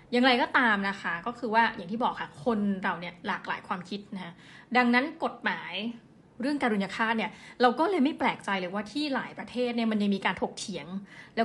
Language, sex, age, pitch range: Thai, female, 20-39, 205-250 Hz